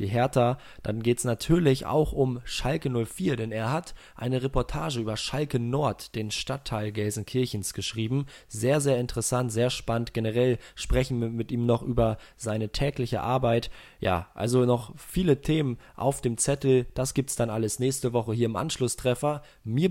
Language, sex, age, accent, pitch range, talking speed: German, male, 20-39, German, 110-135 Hz, 165 wpm